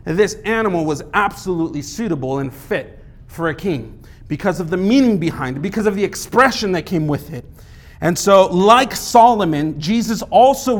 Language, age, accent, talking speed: English, 40-59, American, 165 wpm